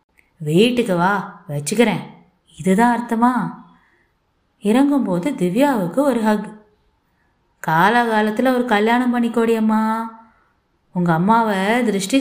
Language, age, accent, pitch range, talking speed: Tamil, 20-39, native, 190-250 Hz, 85 wpm